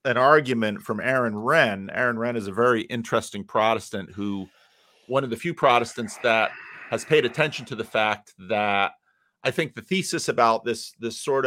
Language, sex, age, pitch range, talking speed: English, male, 40-59, 110-140 Hz, 180 wpm